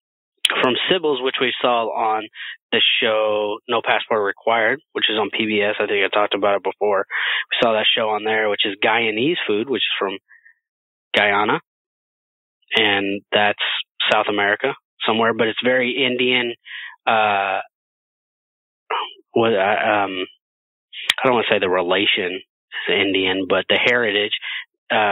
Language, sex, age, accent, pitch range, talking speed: English, male, 20-39, American, 100-115 Hz, 145 wpm